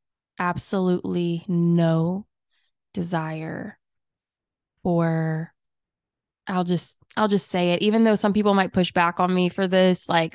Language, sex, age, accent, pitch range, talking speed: English, female, 20-39, American, 170-195 Hz, 130 wpm